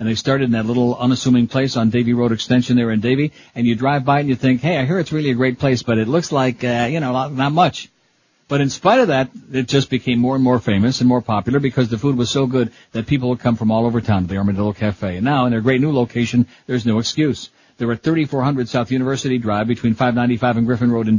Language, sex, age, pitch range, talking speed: English, male, 60-79, 120-135 Hz, 265 wpm